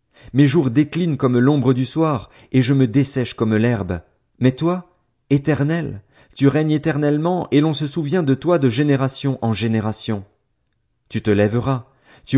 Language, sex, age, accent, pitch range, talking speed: French, male, 40-59, French, 100-135 Hz, 160 wpm